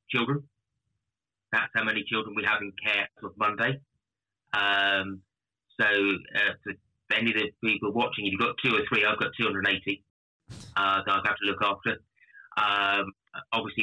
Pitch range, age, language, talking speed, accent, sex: 95-110 Hz, 30-49, English, 165 wpm, British, male